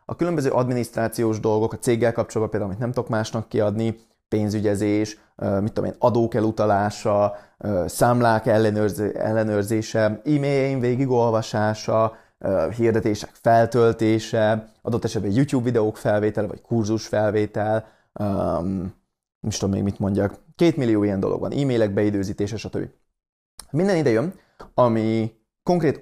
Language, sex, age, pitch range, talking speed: Hungarian, male, 30-49, 105-125 Hz, 115 wpm